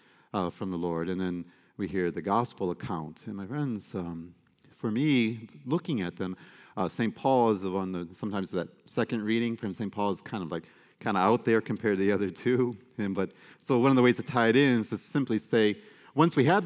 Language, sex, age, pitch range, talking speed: English, male, 40-59, 95-125 Hz, 235 wpm